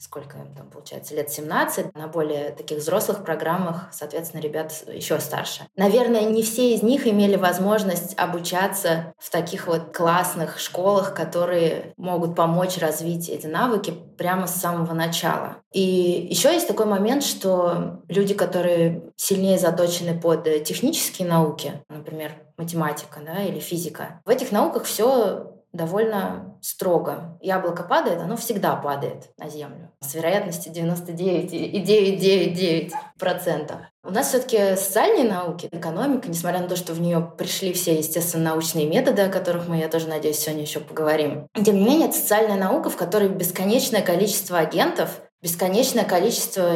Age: 20-39